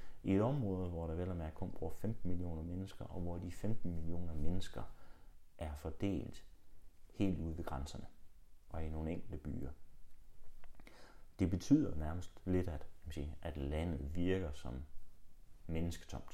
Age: 30-49